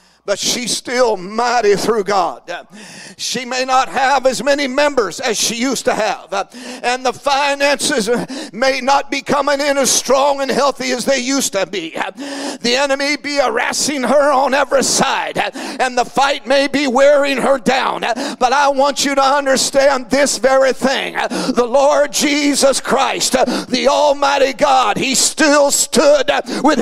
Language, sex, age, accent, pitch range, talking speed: English, male, 50-69, American, 265-305 Hz, 160 wpm